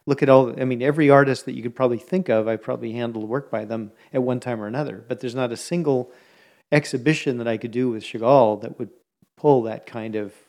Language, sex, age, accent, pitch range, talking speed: English, male, 40-59, American, 115-140 Hz, 240 wpm